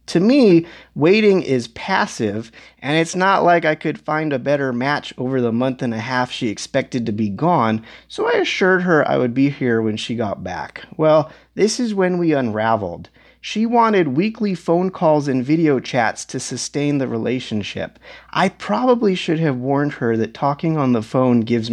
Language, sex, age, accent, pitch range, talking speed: English, male, 30-49, American, 125-175 Hz, 190 wpm